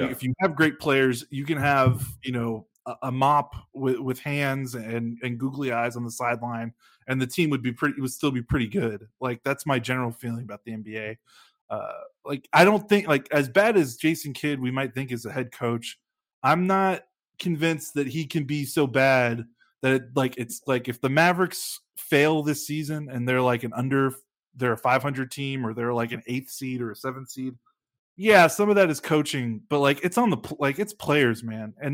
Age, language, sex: 20-39, English, male